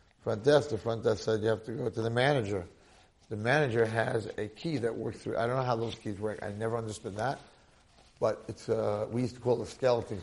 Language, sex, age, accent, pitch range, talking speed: English, male, 50-69, American, 110-145 Hz, 245 wpm